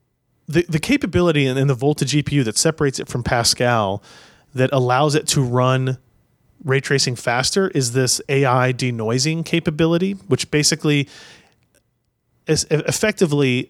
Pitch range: 115-145 Hz